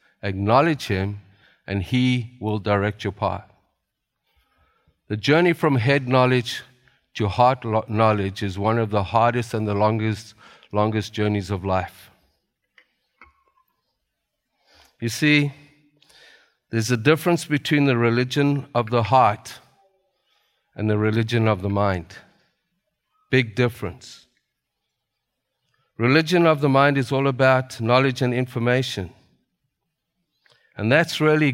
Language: English